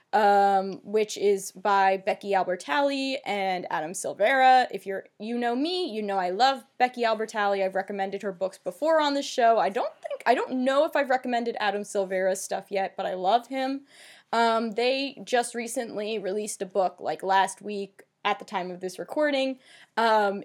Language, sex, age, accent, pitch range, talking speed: English, female, 20-39, American, 195-255 Hz, 180 wpm